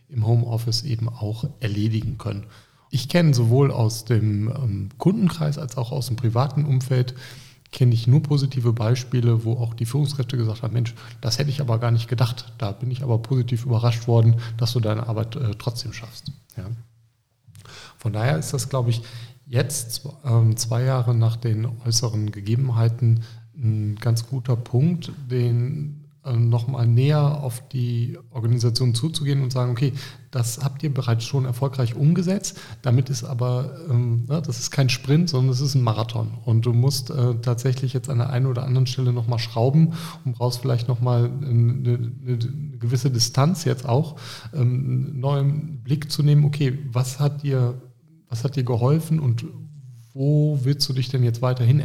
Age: 40-59